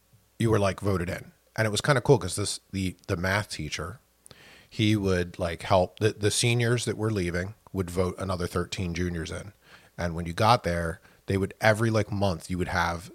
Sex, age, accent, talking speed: male, 30-49, American, 210 wpm